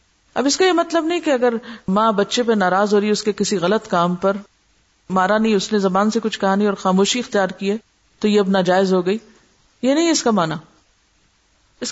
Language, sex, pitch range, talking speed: Urdu, female, 195-285 Hz, 225 wpm